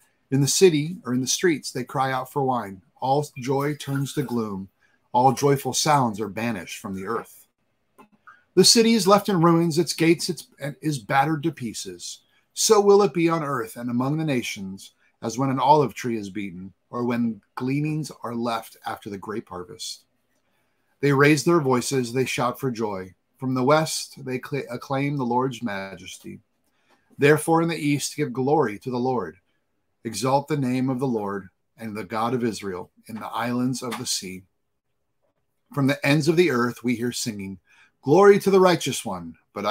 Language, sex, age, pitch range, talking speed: English, male, 30-49, 115-150 Hz, 180 wpm